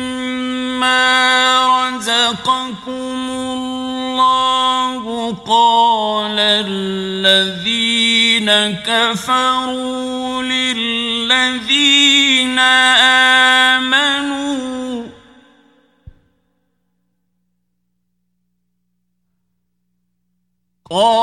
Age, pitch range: 50-69, 230-280 Hz